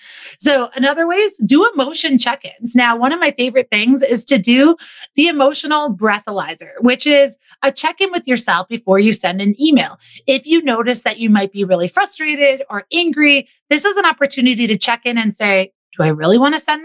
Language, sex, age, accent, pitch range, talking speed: English, female, 30-49, American, 205-285 Hz, 195 wpm